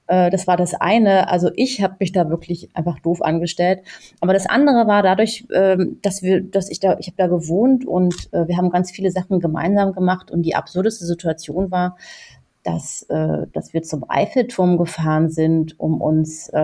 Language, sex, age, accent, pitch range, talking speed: German, female, 30-49, German, 170-215 Hz, 180 wpm